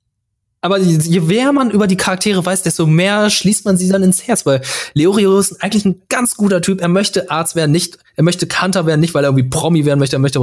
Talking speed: 240 wpm